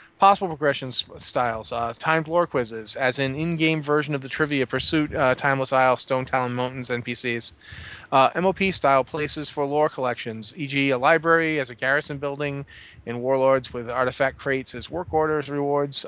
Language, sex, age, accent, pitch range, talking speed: English, male, 30-49, American, 125-155 Hz, 165 wpm